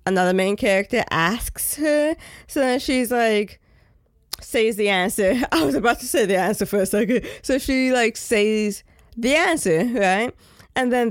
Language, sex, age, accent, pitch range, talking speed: English, female, 20-39, American, 190-235 Hz, 170 wpm